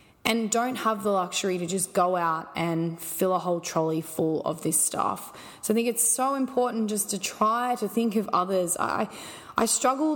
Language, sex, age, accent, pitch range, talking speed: English, female, 20-39, Australian, 185-225 Hz, 200 wpm